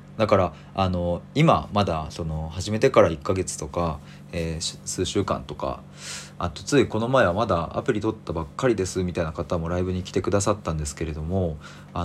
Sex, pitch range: male, 85-110 Hz